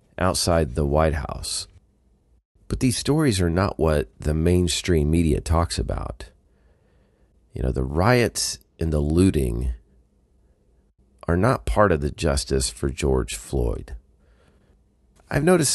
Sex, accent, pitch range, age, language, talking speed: male, American, 70-95 Hz, 40-59, English, 125 wpm